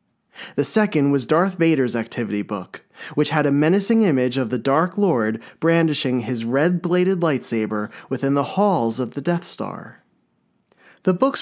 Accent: American